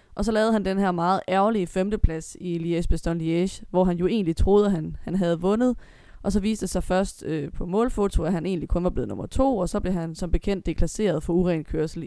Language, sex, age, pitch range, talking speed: Danish, female, 20-39, 170-205 Hz, 240 wpm